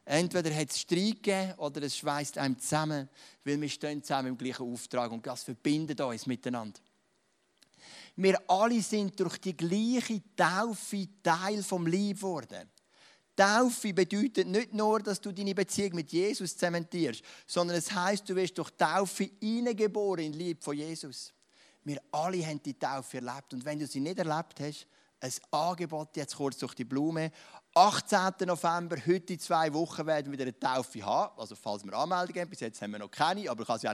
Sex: male